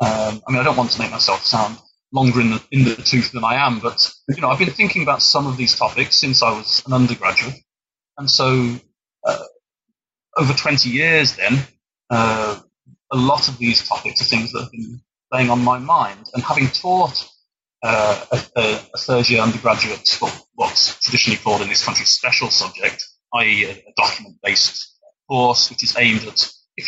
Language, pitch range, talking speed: English, 115-140 Hz, 185 wpm